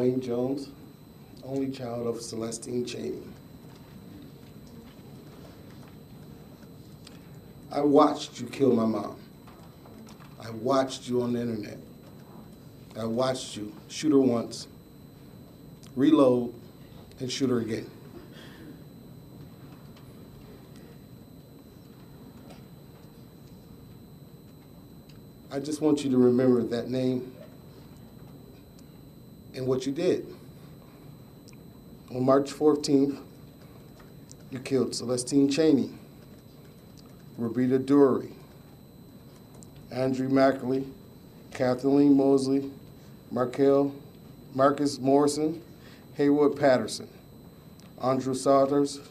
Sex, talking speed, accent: male, 75 wpm, American